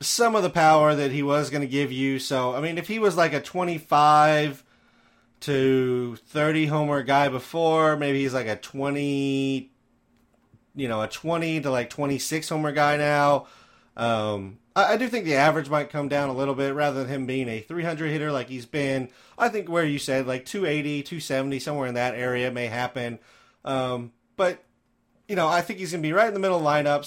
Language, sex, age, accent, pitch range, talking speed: English, male, 30-49, American, 125-155 Hz, 210 wpm